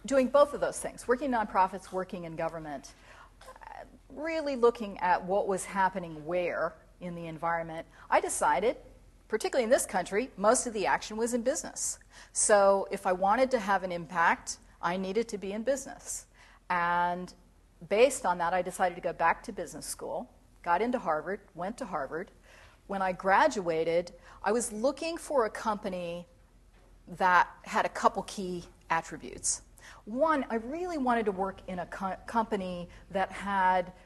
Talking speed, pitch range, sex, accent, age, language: 160 wpm, 175-220 Hz, female, American, 40-59, English